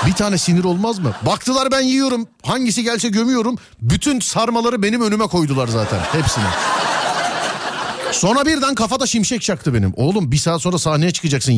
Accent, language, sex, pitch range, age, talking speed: native, Turkish, male, 120-200 Hz, 40-59, 155 wpm